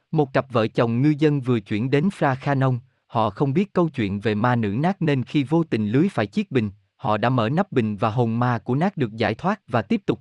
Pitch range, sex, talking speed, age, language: 110-155 Hz, male, 260 wpm, 20-39, Vietnamese